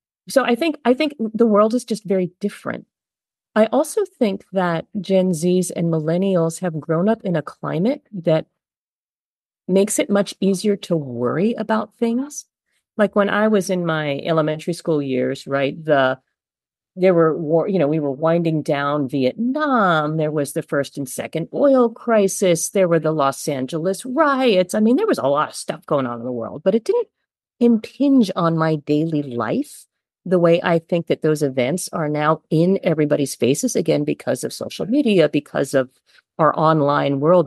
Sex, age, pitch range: female, 40-59, 150-205 Hz